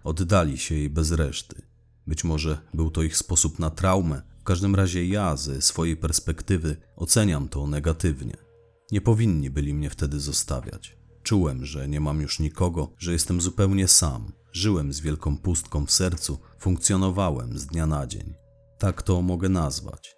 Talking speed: 160 wpm